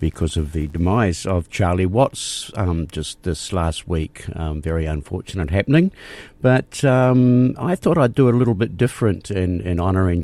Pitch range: 85-115 Hz